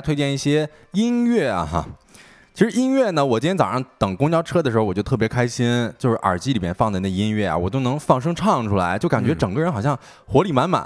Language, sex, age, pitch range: Chinese, male, 20-39, 100-160 Hz